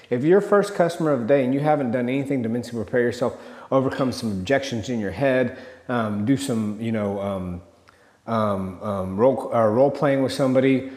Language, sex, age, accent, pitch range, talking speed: English, male, 30-49, American, 115-140 Hz, 190 wpm